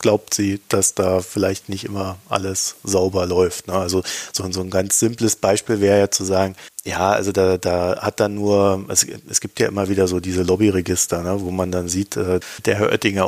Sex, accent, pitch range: male, German, 95-110 Hz